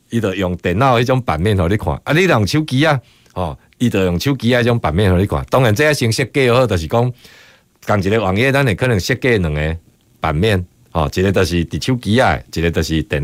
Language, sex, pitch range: Chinese, male, 95-135 Hz